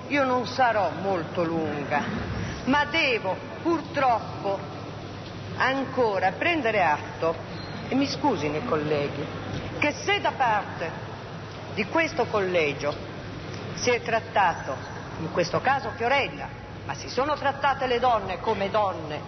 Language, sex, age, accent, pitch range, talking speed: Italian, female, 50-69, native, 165-255 Hz, 120 wpm